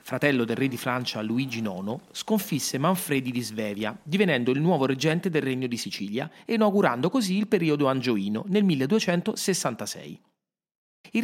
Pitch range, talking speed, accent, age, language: 120-185 Hz, 150 wpm, native, 30-49, Italian